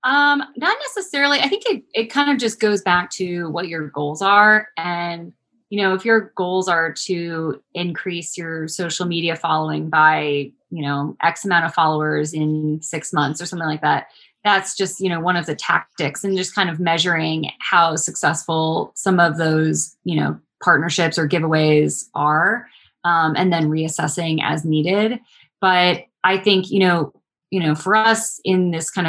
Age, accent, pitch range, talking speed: 20-39, American, 160-195 Hz, 175 wpm